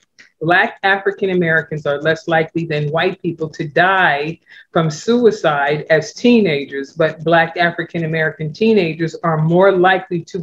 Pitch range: 155-185 Hz